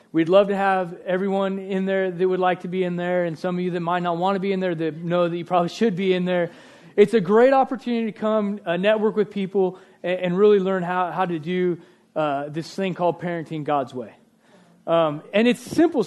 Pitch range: 180-235 Hz